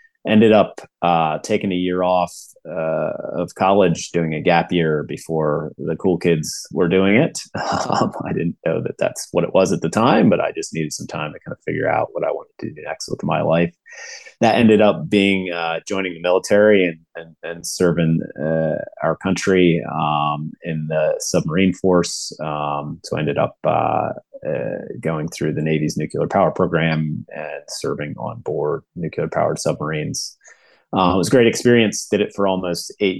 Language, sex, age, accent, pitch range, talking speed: English, male, 30-49, American, 80-95 Hz, 185 wpm